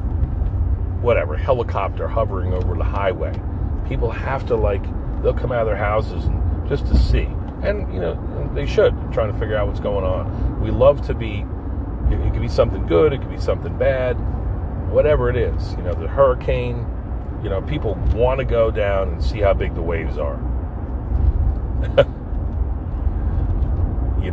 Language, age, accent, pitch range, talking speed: English, 40-59, American, 80-100 Hz, 170 wpm